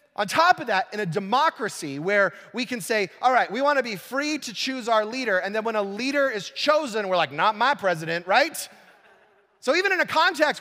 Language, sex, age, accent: English, male, 30-49, American